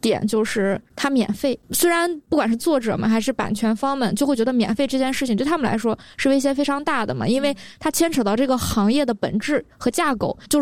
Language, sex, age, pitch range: Chinese, female, 20-39, 210-255 Hz